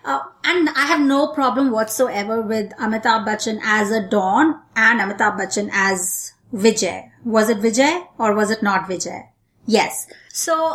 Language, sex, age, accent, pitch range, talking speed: English, female, 30-49, Indian, 215-275 Hz, 155 wpm